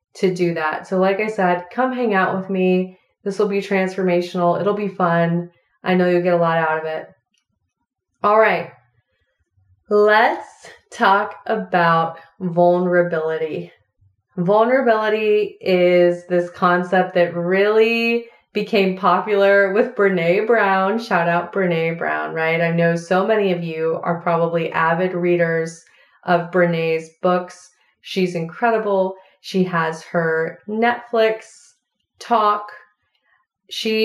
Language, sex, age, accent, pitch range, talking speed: English, female, 20-39, American, 170-205 Hz, 125 wpm